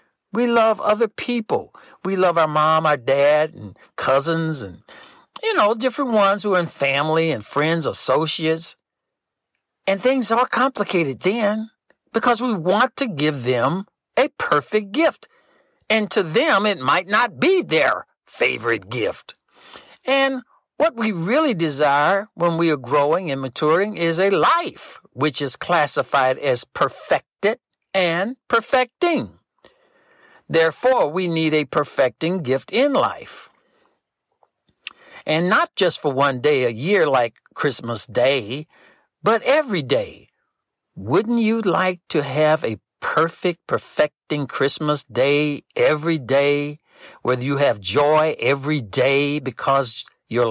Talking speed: 130 wpm